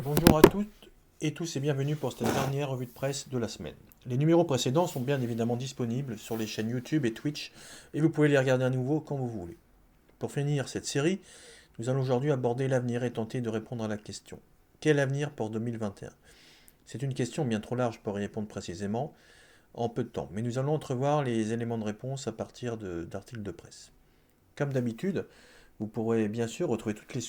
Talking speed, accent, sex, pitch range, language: 210 wpm, French, male, 105-130 Hz, French